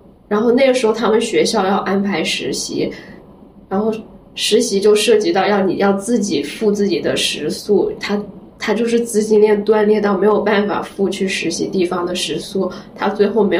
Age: 10-29